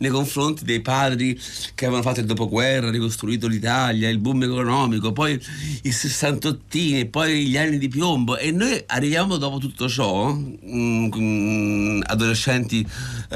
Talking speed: 130 wpm